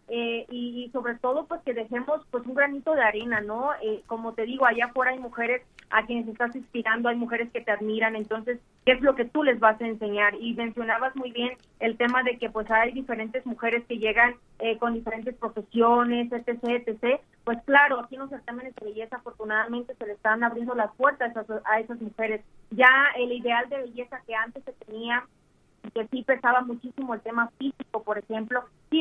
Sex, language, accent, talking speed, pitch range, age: female, Spanish, Mexican, 200 wpm, 225-255 Hz, 30-49